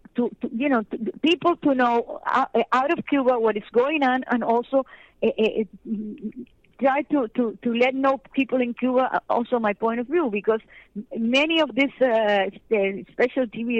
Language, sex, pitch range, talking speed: English, female, 210-255 Hz, 180 wpm